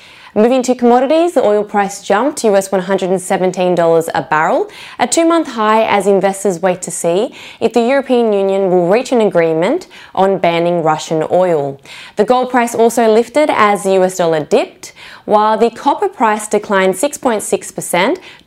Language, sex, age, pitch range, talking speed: English, female, 20-39, 180-245 Hz, 155 wpm